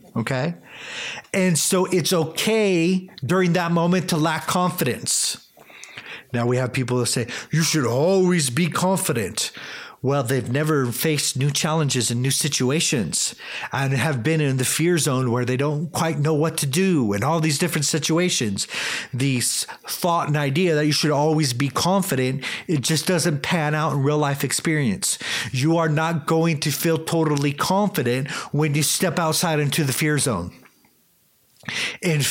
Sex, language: male, English